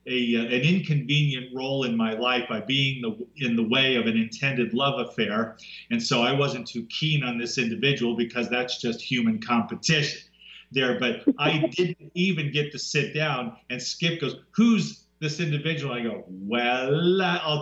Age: 40-59